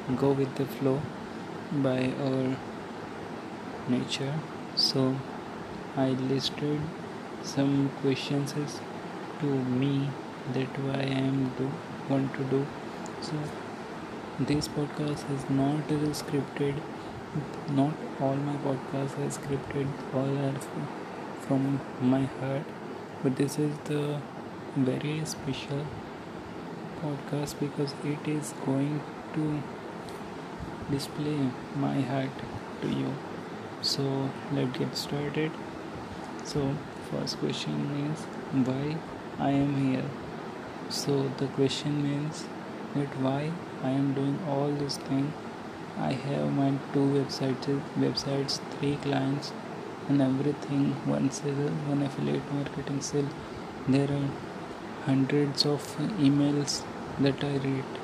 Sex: male